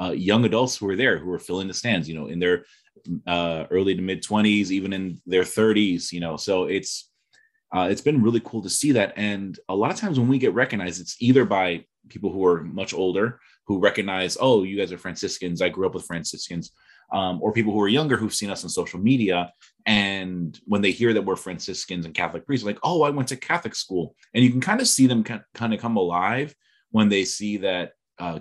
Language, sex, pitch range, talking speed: English, male, 90-115 Hz, 230 wpm